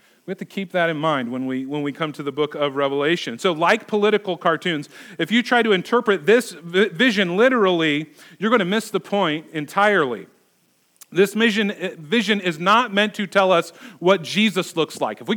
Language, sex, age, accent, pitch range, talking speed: English, male, 40-59, American, 155-205 Hz, 200 wpm